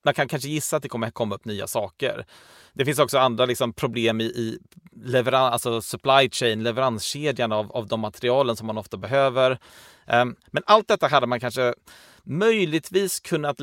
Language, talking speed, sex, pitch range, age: Swedish, 180 wpm, male, 115-145 Hz, 30-49